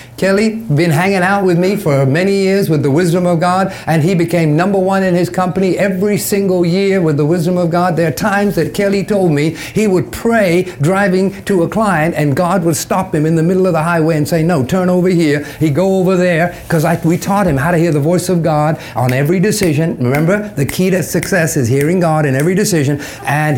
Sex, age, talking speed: male, 50-69, 230 wpm